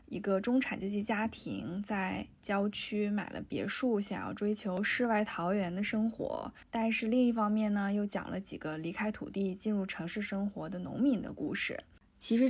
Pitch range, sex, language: 195-250 Hz, female, Chinese